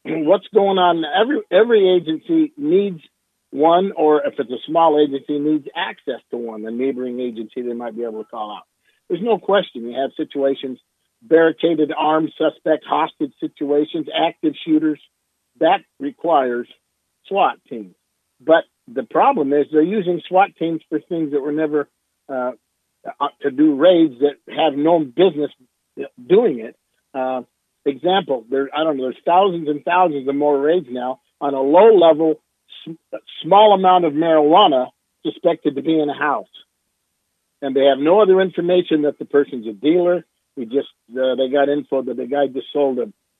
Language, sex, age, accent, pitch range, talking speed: English, male, 50-69, American, 135-175 Hz, 165 wpm